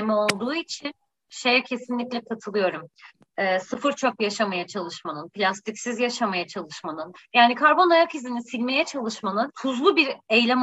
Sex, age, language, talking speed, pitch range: female, 30-49, Turkish, 125 wpm, 210-285 Hz